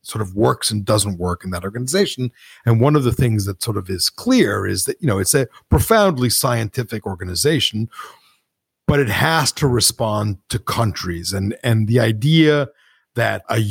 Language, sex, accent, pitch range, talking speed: English, male, American, 100-125 Hz, 180 wpm